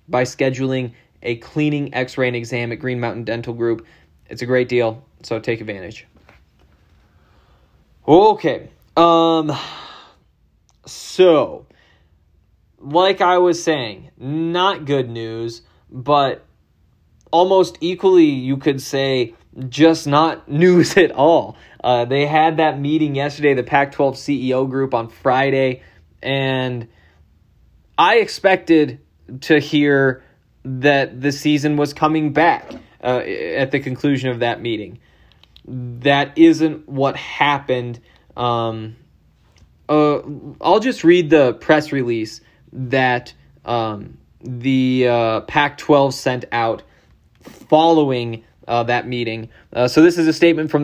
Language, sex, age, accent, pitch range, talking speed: English, male, 20-39, American, 120-150 Hz, 120 wpm